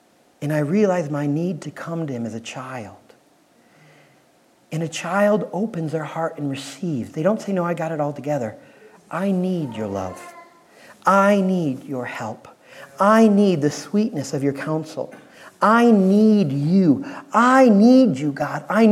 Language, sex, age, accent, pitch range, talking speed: English, male, 40-59, American, 160-220 Hz, 165 wpm